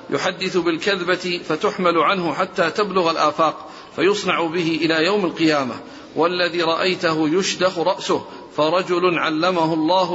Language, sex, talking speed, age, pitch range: Arabic, male, 110 wpm, 50-69, 160-185 Hz